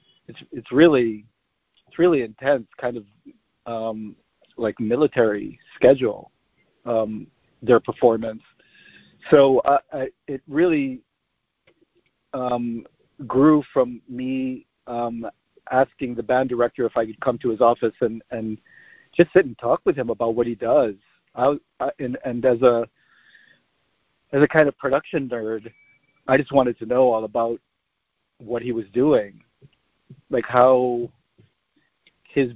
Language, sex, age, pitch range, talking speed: English, male, 50-69, 115-130 Hz, 140 wpm